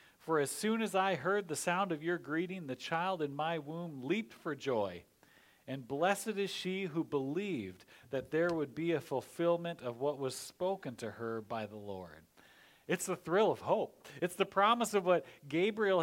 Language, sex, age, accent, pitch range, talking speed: English, male, 40-59, American, 150-195 Hz, 190 wpm